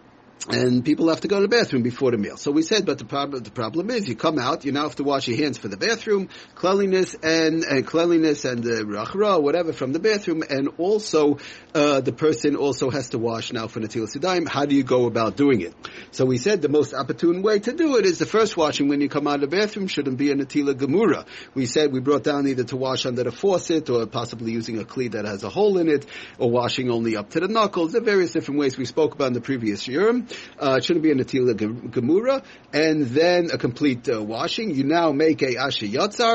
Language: English